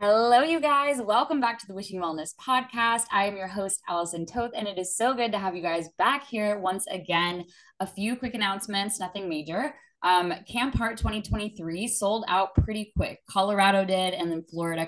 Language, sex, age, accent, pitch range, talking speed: English, female, 10-29, American, 180-240 Hz, 195 wpm